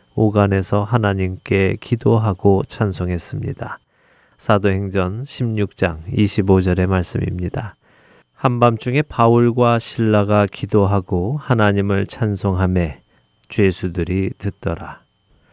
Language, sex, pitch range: Korean, male, 95-115 Hz